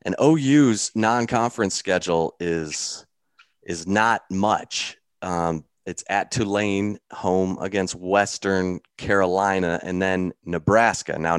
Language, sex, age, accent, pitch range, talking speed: English, male, 30-49, American, 85-95 Hz, 105 wpm